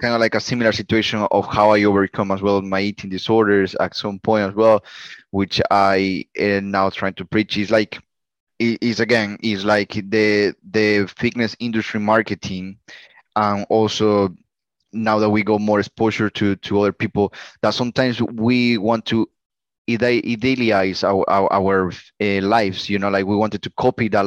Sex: male